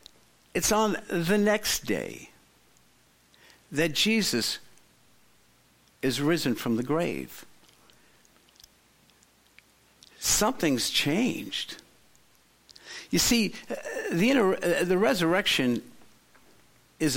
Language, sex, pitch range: English, male, 140-200 Hz